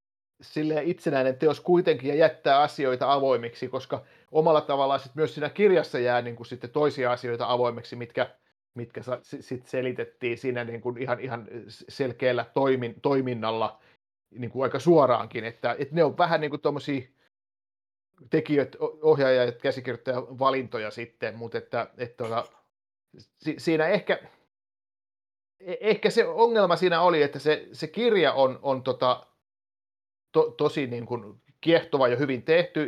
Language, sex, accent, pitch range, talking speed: Finnish, male, native, 125-155 Hz, 125 wpm